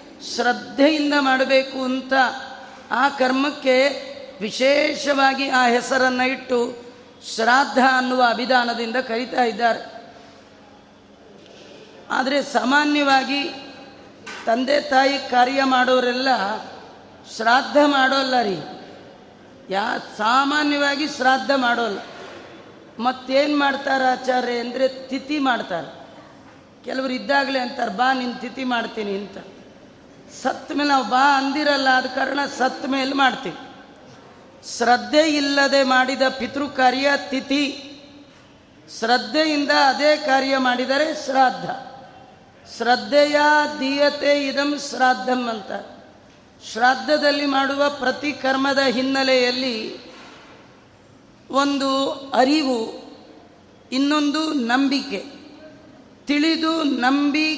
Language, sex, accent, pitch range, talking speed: Kannada, female, native, 255-280 Hz, 80 wpm